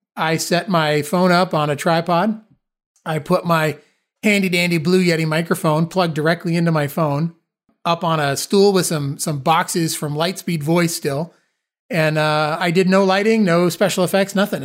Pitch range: 150-180 Hz